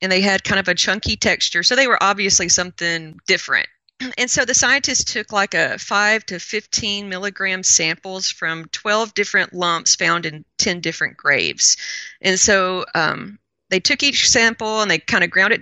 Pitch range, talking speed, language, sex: 170-210 Hz, 185 wpm, English, female